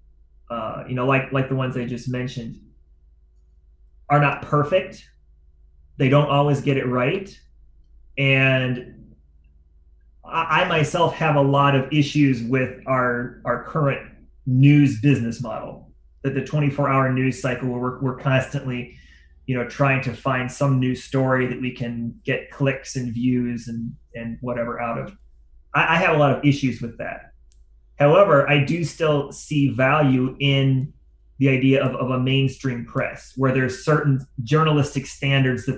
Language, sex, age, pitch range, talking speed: English, male, 30-49, 115-145 Hz, 160 wpm